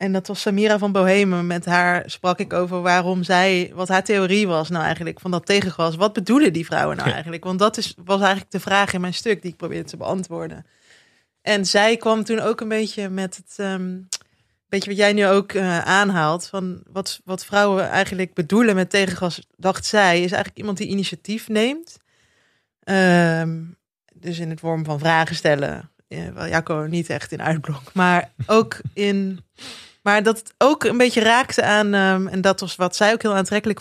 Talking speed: 195 wpm